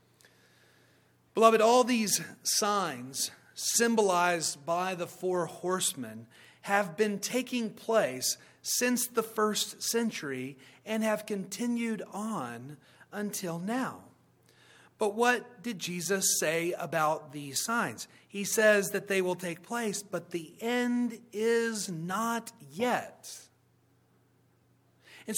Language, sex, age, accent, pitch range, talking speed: English, male, 40-59, American, 175-230 Hz, 105 wpm